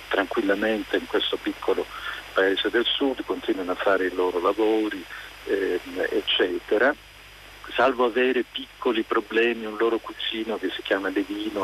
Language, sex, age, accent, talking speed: Italian, male, 50-69, native, 135 wpm